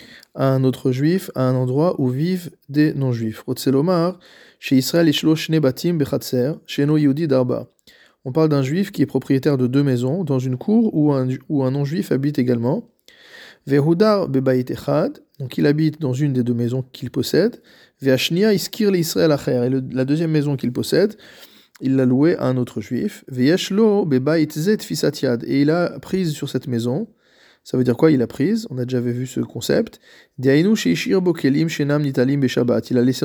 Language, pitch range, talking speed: French, 130-165 Hz, 145 wpm